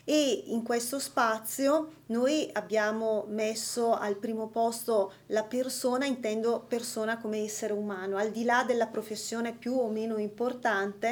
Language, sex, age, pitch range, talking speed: Italian, female, 30-49, 215-250 Hz, 140 wpm